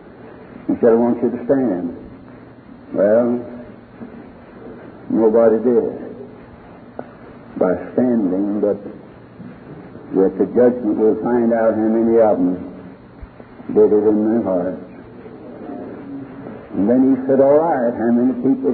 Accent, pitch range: American, 110-150 Hz